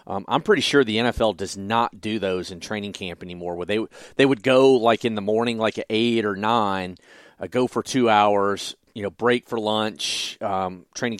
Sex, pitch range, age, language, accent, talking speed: male, 105-130 Hz, 40-59, English, American, 215 wpm